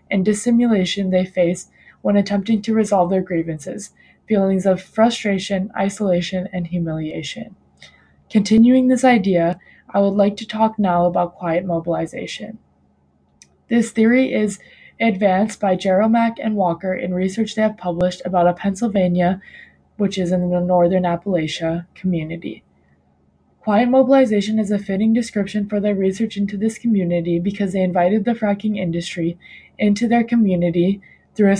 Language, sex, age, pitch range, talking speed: English, female, 20-39, 175-210 Hz, 140 wpm